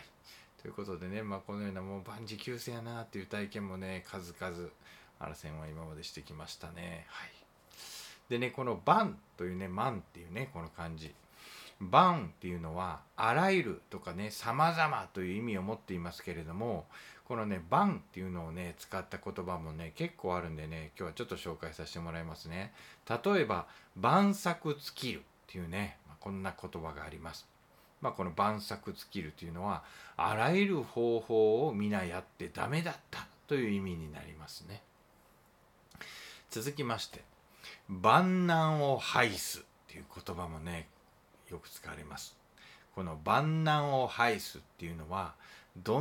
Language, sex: Japanese, male